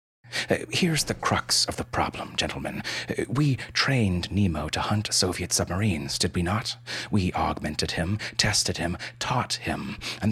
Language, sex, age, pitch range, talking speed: English, male, 30-49, 90-120 Hz, 145 wpm